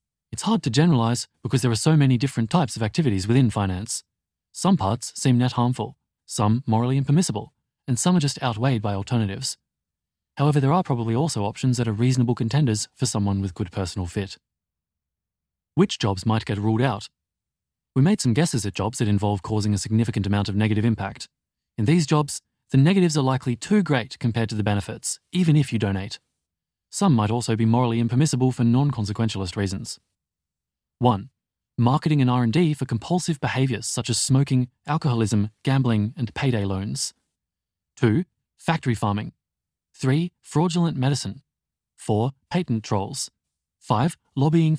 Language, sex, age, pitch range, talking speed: English, male, 30-49, 105-140 Hz, 160 wpm